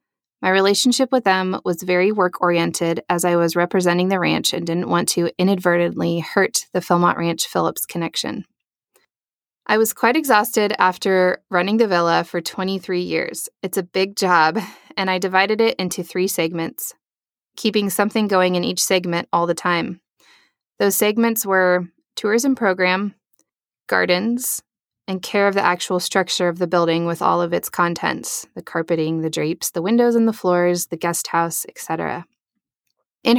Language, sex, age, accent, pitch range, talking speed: English, female, 20-39, American, 175-200 Hz, 160 wpm